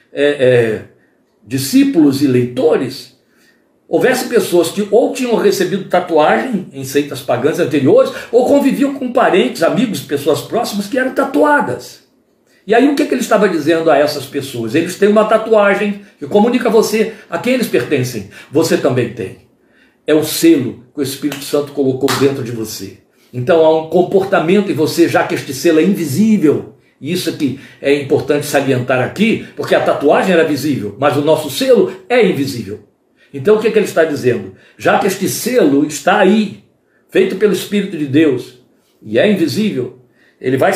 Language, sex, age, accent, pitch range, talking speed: Portuguese, male, 60-79, Brazilian, 130-205 Hz, 170 wpm